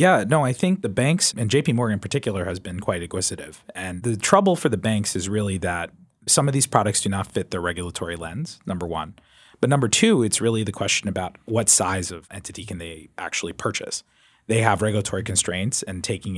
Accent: American